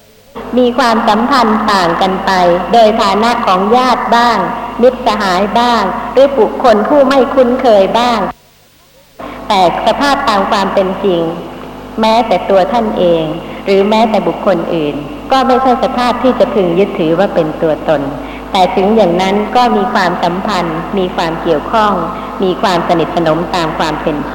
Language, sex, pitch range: Thai, male, 190-245 Hz